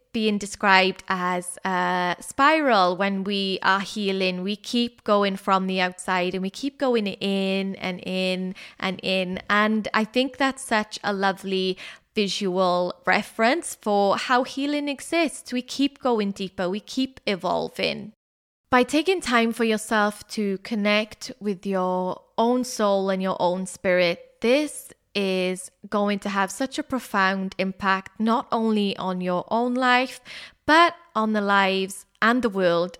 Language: English